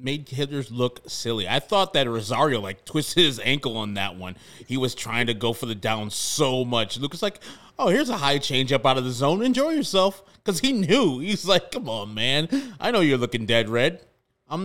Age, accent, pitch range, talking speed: 20-39, American, 120-160 Hz, 220 wpm